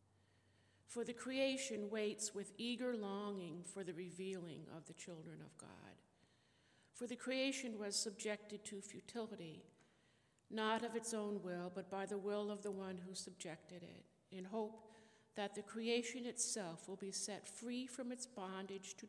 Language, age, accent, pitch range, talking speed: English, 50-69, American, 180-225 Hz, 160 wpm